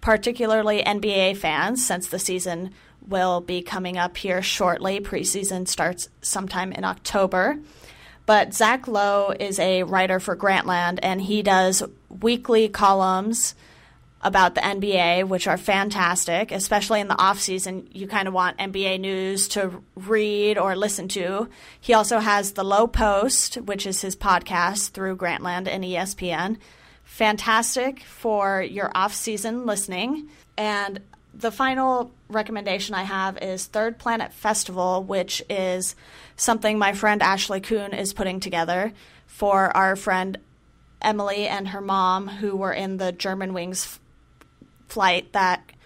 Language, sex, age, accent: English, female, 30-49, American